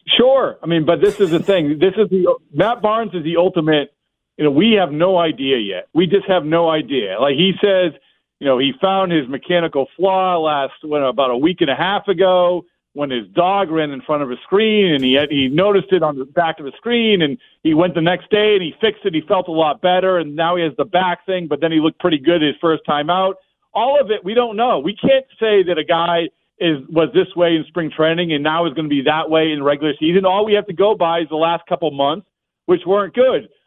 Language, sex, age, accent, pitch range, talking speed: English, male, 50-69, American, 155-195 Hz, 255 wpm